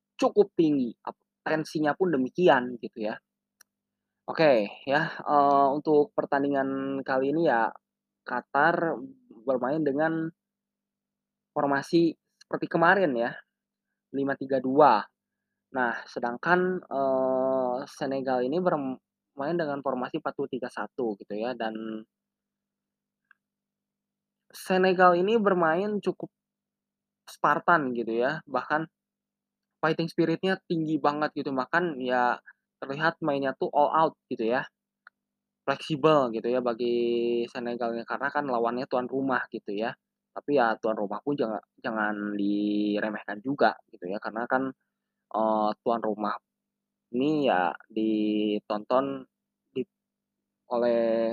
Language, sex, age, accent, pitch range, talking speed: Indonesian, male, 20-39, native, 120-175 Hz, 105 wpm